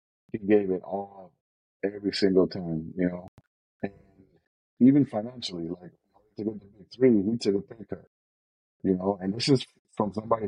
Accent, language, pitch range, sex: American, English, 85-100 Hz, male